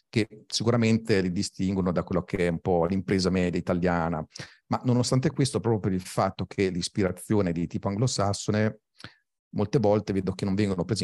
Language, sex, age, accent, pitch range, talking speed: Italian, male, 40-59, native, 85-105 Hz, 180 wpm